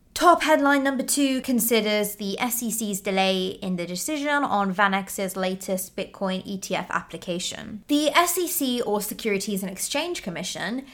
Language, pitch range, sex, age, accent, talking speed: English, 185-245 Hz, female, 20-39, British, 130 wpm